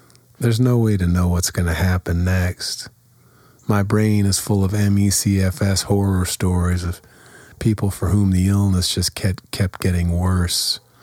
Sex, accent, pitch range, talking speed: male, American, 90-115 Hz, 160 wpm